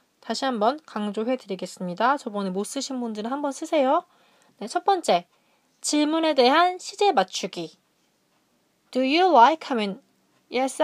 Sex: female